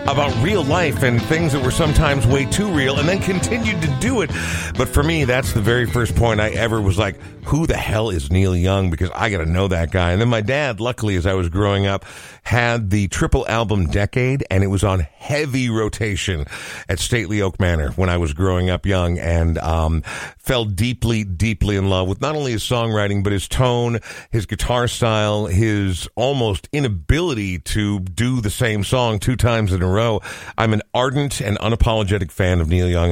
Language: English